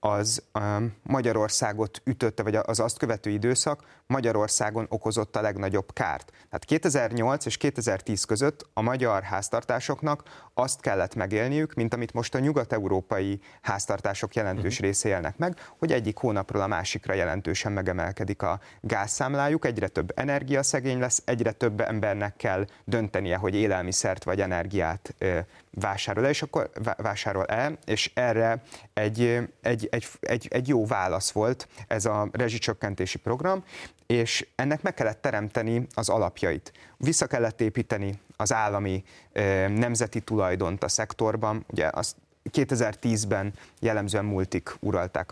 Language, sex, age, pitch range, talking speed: Hungarian, male, 30-49, 95-115 Hz, 130 wpm